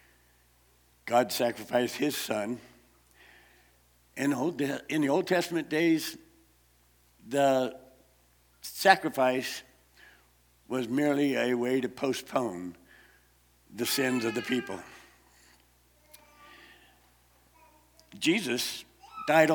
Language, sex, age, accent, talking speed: English, male, 60-79, American, 75 wpm